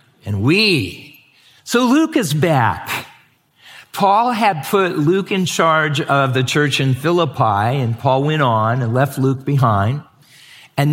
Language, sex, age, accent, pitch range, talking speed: English, male, 50-69, American, 120-160 Hz, 145 wpm